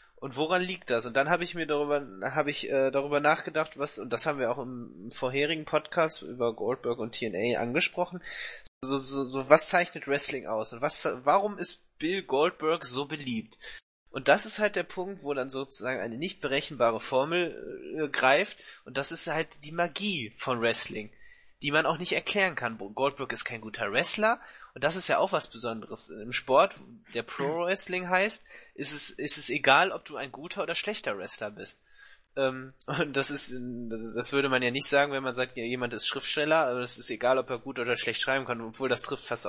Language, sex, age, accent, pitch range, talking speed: German, male, 20-39, German, 130-170 Hz, 205 wpm